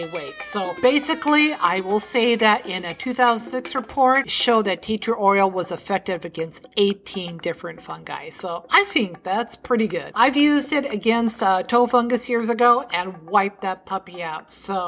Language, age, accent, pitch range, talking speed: English, 50-69, American, 195-270 Hz, 170 wpm